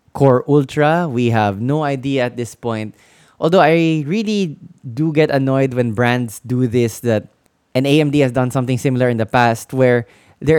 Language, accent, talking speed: English, Filipino, 175 wpm